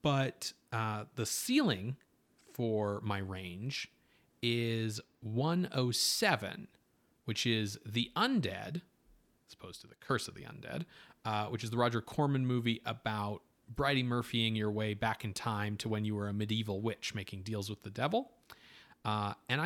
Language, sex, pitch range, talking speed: English, male, 105-135 Hz, 155 wpm